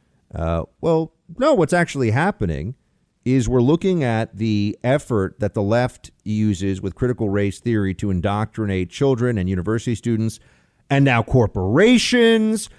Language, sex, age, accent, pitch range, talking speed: English, male, 40-59, American, 115-195 Hz, 135 wpm